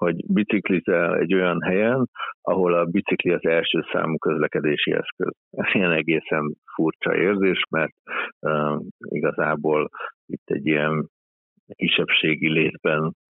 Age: 60-79